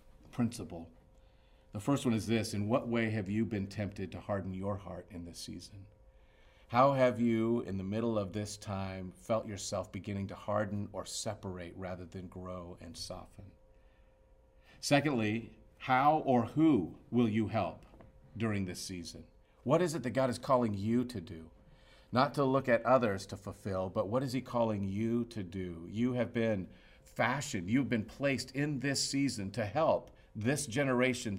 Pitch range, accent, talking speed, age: 95-120 Hz, American, 170 wpm, 50-69